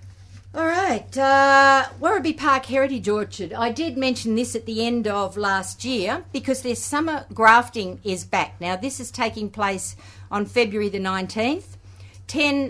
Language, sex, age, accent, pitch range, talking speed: English, female, 50-69, Australian, 185-240 Hz, 155 wpm